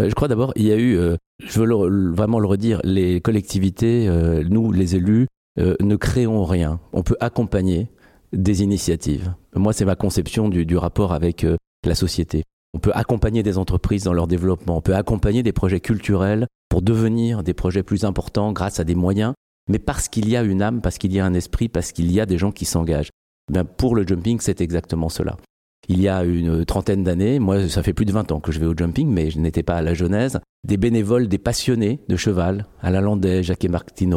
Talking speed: 215 wpm